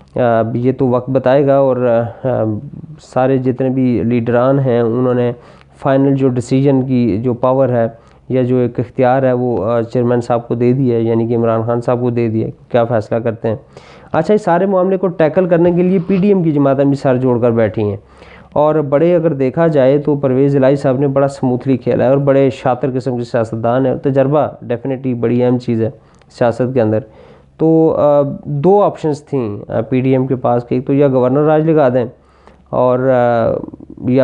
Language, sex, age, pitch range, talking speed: Urdu, male, 20-39, 120-140 Hz, 200 wpm